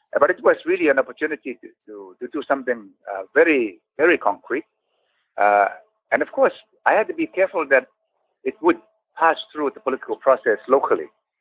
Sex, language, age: male, English, 60-79